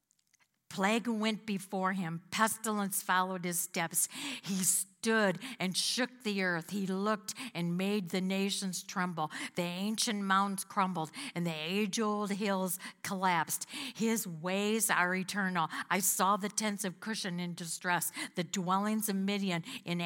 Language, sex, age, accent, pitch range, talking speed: English, female, 50-69, American, 180-225 Hz, 140 wpm